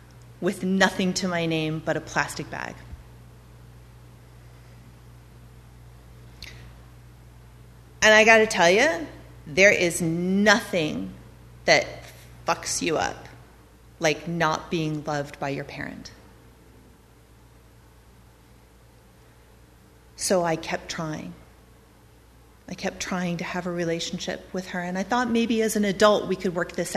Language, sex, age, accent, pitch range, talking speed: English, female, 30-49, American, 155-200 Hz, 120 wpm